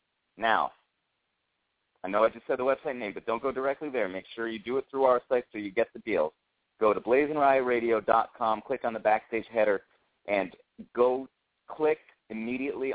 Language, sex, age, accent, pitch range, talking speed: English, male, 40-59, American, 110-135 Hz, 180 wpm